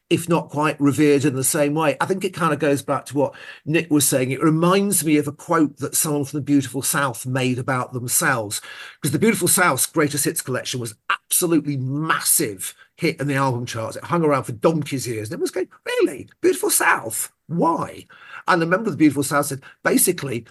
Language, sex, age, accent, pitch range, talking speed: English, male, 50-69, British, 125-165 Hz, 210 wpm